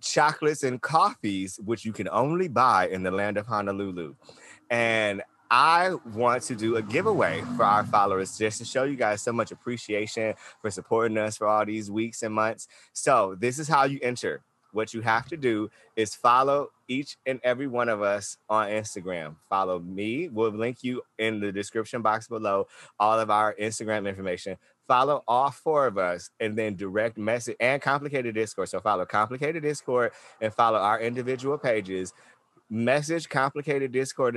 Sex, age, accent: male, 20-39, American